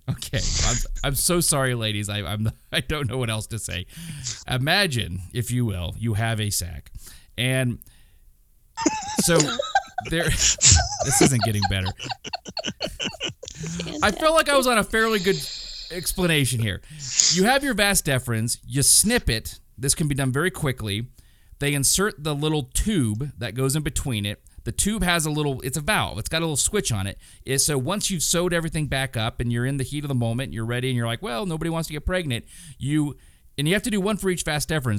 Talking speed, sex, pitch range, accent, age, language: 200 wpm, male, 110-155 Hz, American, 30-49, English